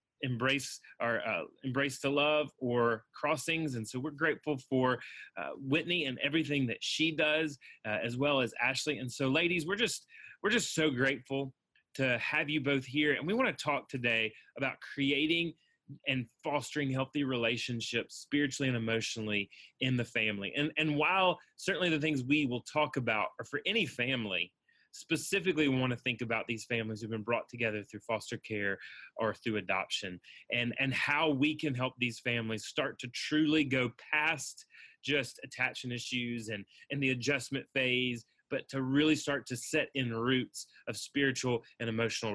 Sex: male